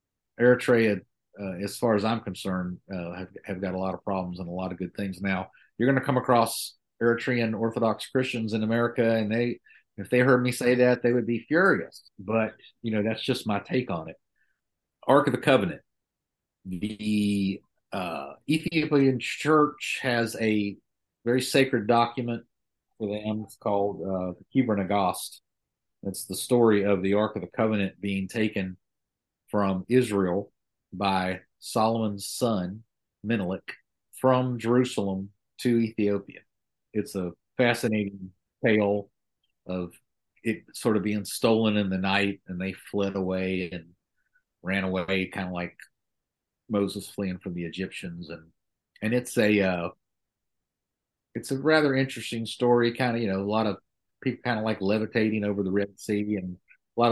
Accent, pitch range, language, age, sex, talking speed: American, 95-120 Hz, English, 50-69, male, 160 wpm